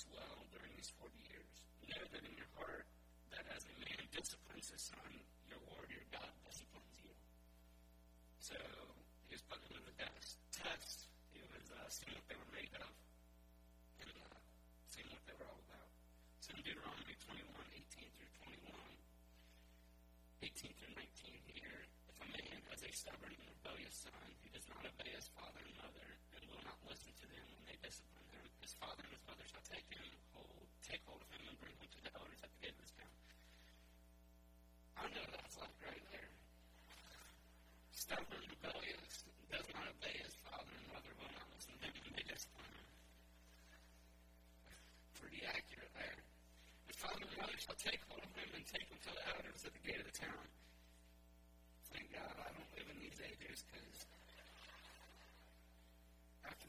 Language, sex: English, male